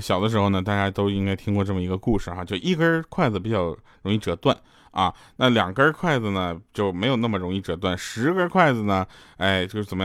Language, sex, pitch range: Chinese, male, 100-140 Hz